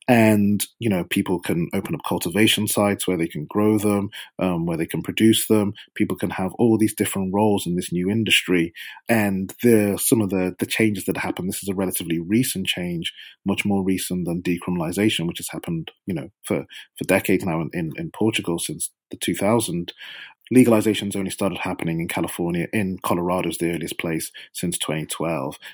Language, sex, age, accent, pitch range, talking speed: English, male, 30-49, British, 85-110 Hz, 195 wpm